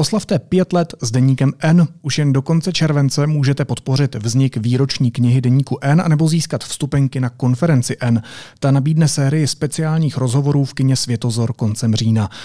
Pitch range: 125-155 Hz